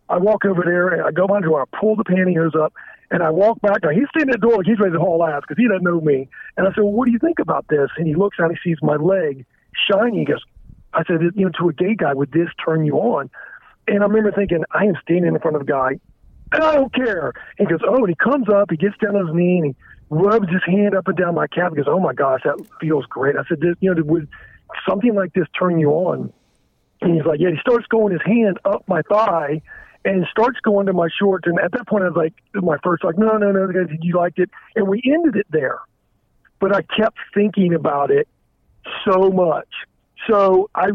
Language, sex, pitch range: English, male, 170-205 Hz